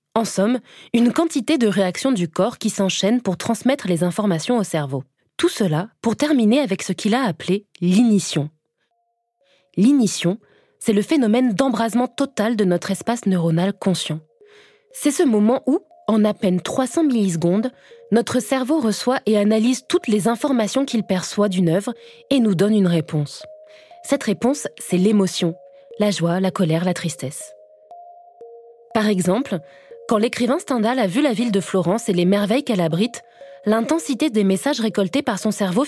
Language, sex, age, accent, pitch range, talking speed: French, female, 20-39, French, 190-265 Hz, 160 wpm